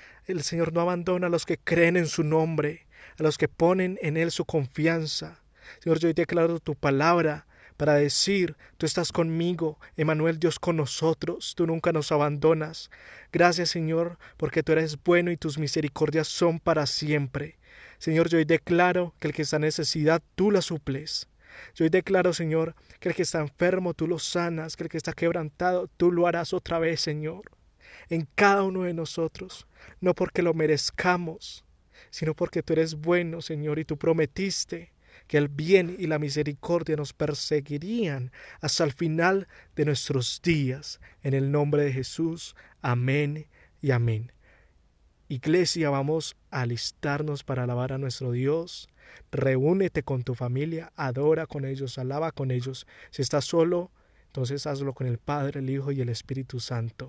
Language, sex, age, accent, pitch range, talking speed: Spanish, male, 20-39, Colombian, 145-170 Hz, 165 wpm